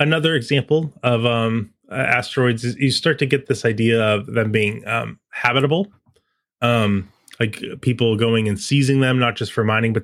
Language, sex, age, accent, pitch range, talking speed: English, male, 20-39, American, 110-135 Hz, 175 wpm